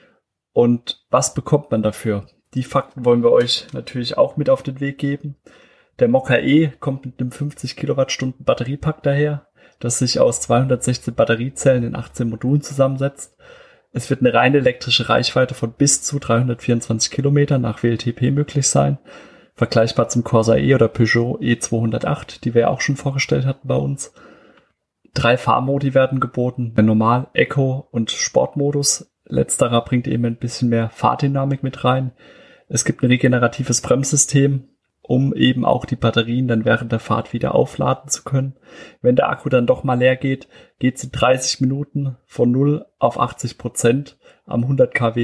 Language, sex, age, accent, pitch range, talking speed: German, male, 30-49, German, 120-140 Hz, 165 wpm